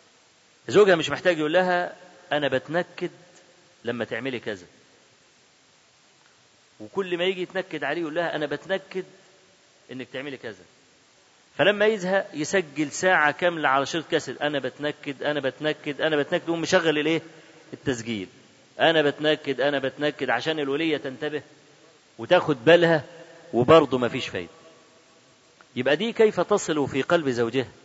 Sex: male